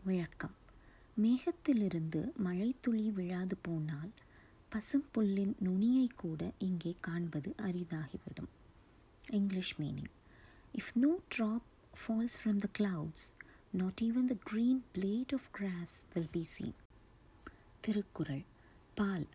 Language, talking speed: Tamil, 105 wpm